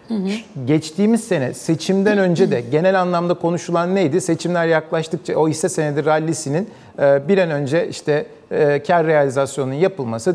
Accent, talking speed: native, 130 wpm